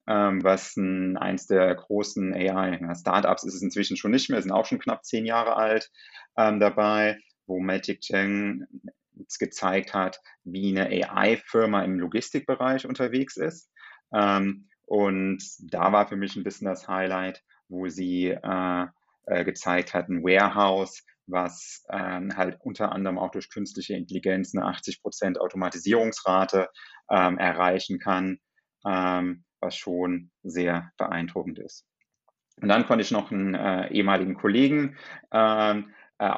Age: 30-49